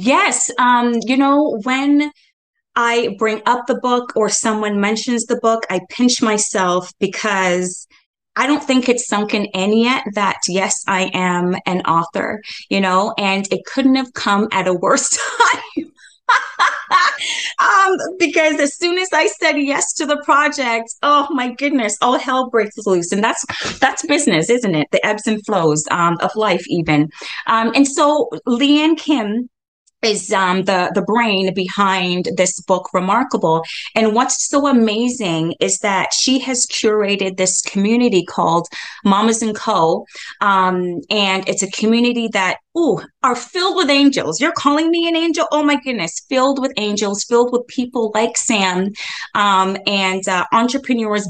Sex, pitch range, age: female, 195-265 Hz, 20-39